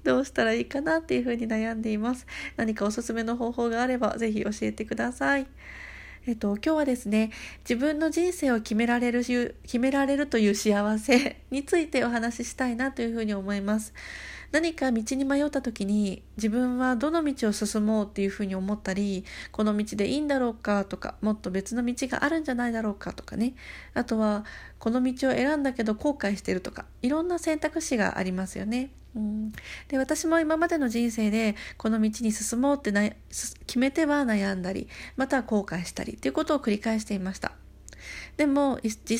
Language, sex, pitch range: Japanese, female, 210-275 Hz